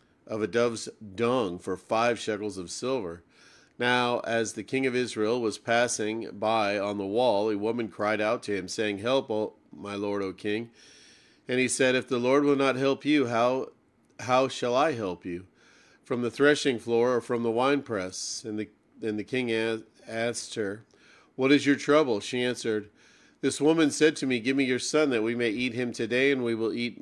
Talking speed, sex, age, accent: 200 wpm, male, 40-59, American